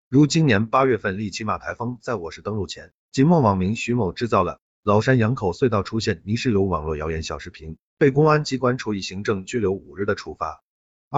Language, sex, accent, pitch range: Chinese, male, native, 95-125 Hz